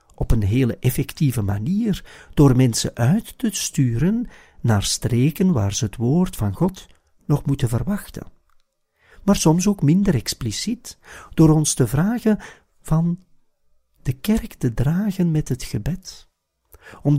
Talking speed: 135 wpm